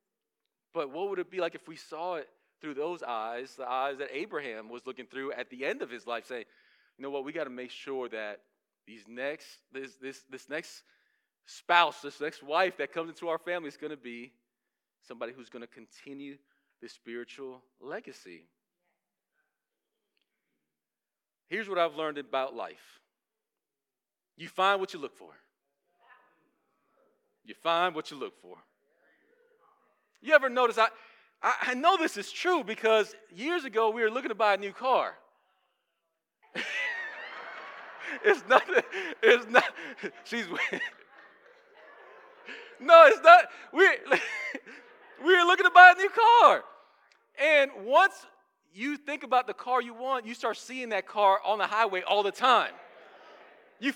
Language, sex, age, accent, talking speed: English, male, 40-59, American, 155 wpm